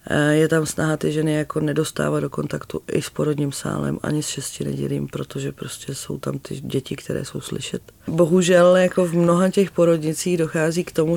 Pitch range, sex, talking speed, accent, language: 130-155 Hz, female, 185 wpm, native, Czech